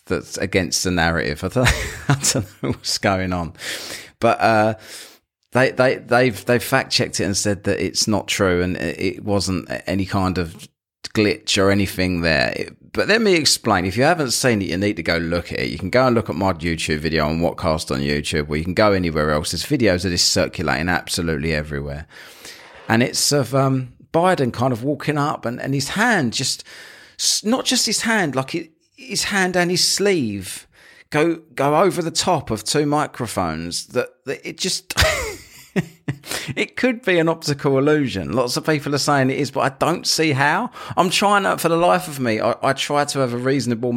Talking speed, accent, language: 205 wpm, British, English